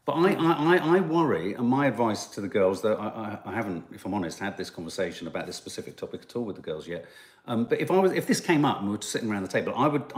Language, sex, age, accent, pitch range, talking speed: English, male, 40-59, British, 115-155 Hz, 295 wpm